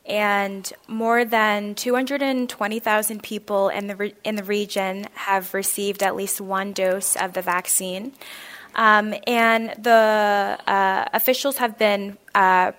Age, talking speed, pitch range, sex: 20-39, 130 wpm, 190-215 Hz, female